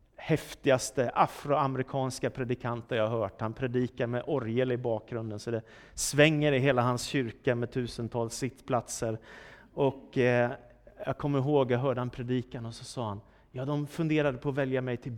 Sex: male